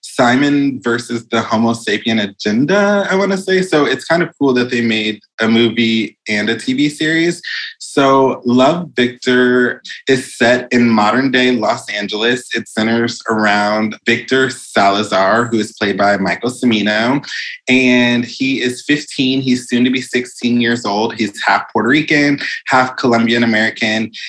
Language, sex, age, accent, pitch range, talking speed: English, male, 20-39, American, 115-145 Hz, 150 wpm